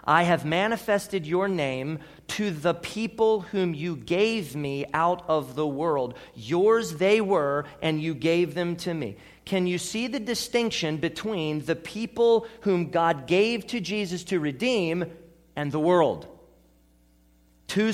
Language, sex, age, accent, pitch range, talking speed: English, male, 40-59, American, 155-200 Hz, 145 wpm